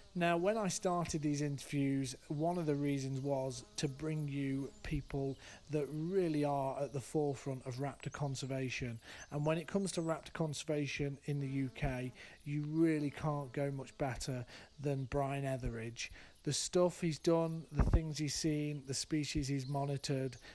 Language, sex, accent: English, male, British